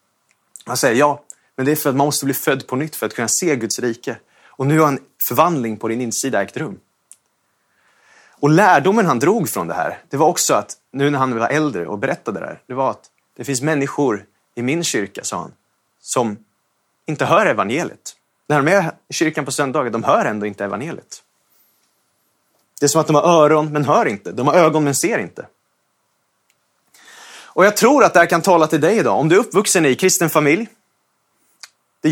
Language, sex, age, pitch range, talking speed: Swedish, male, 30-49, 135-175 Hz, 210 wpm